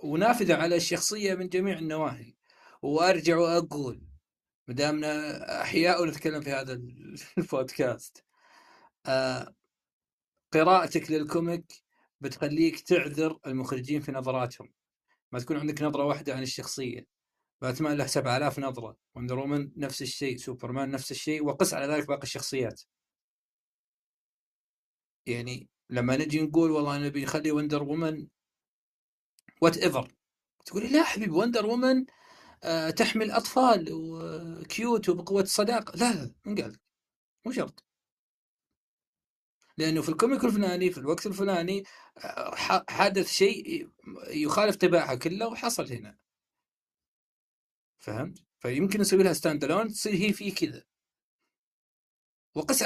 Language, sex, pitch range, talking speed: Arabic, male, 140-195 Hz, 105 wpm